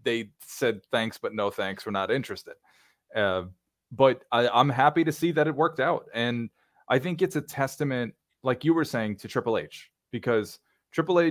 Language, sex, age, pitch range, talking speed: English, male, 20-39, 105-135 Hz, 180 wpm